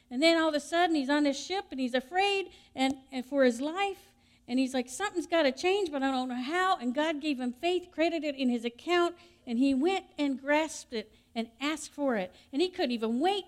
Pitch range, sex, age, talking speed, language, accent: 190-265 Hz, female, 50-69, 245 wpm, English, American